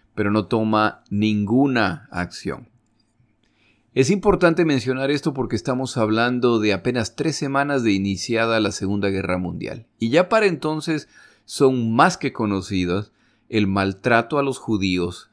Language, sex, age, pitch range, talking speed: Spanish, male, 40-59, 95-125 Hz, 135 wpm